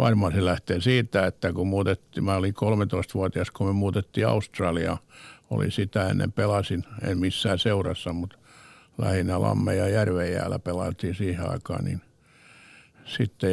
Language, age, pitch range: Finnish, 60-79, 90-105 Hz